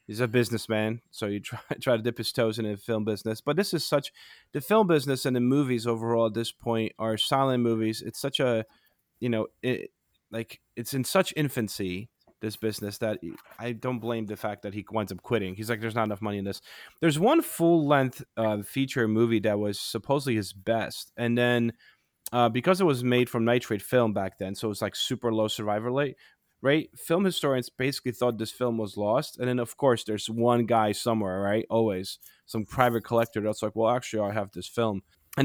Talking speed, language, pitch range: 220 wpm, English, 105-125 Hz